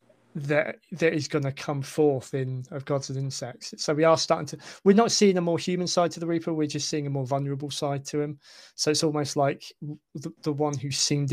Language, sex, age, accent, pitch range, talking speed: English, male, 20-39, British, 140-155 Hz, 240 wpm